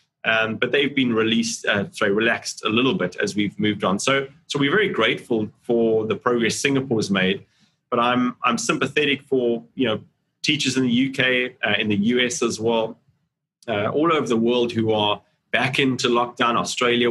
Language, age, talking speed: English, 30-49, 190 wpm